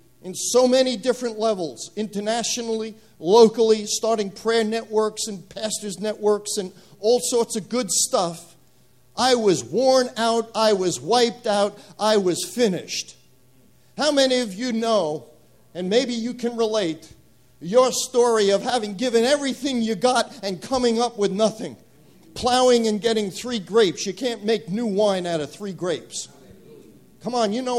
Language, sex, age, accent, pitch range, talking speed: English, male, 50-69, American, 200-240 Hz, 155 wpm